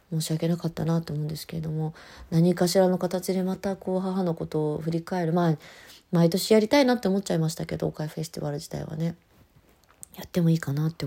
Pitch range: 160-185 Hz